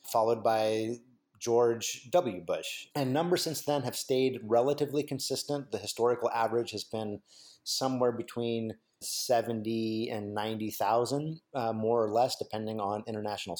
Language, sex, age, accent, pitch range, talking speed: English, male, 30-49, American, 105-130 Hz, 130 wpm